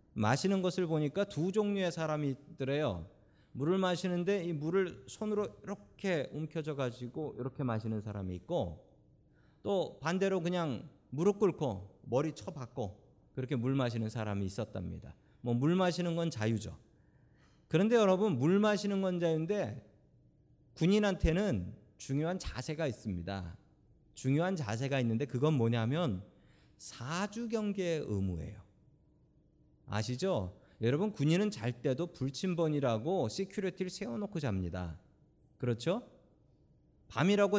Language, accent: Korean, native